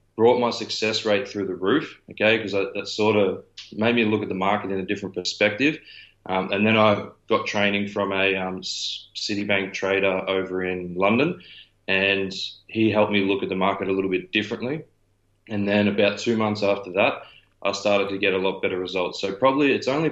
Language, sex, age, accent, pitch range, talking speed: English, male, 20-39, Australian, 95-105 Hz, 200 wpm